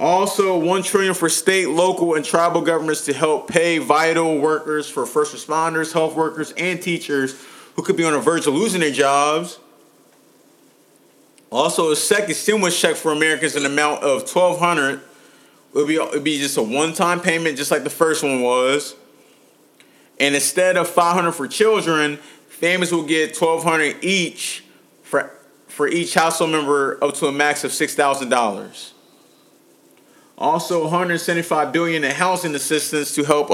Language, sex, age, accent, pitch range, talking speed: English, male, 30-49, American, 145-170 Hz, 155 wpm